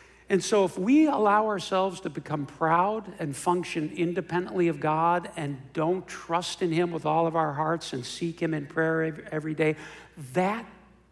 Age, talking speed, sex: 60-79, 175 wpm, male